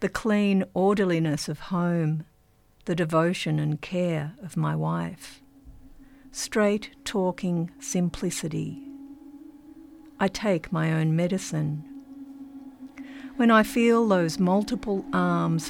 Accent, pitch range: Australian, 165-270 Hz